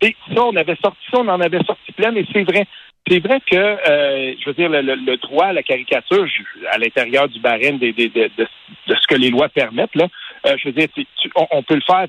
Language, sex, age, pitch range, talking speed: French, male, 60-79, 140-220 Hz, 270 wpm